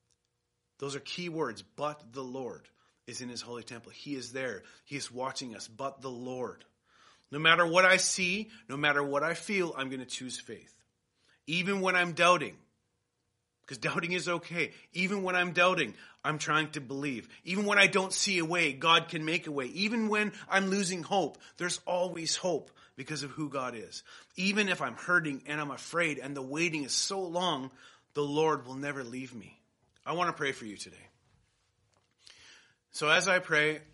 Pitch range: 120-170 Hz